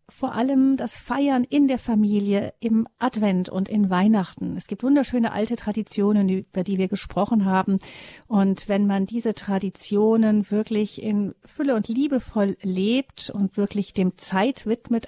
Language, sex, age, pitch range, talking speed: German, female, 50-69, 185-220 Hz, 150 wpm